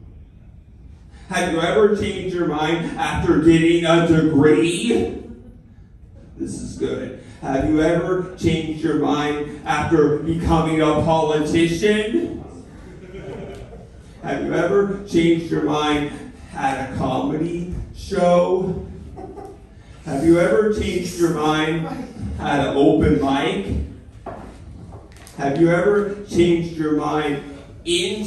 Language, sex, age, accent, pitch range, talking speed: English, male, 40-59, American, 135-175 Hz, 105 wpm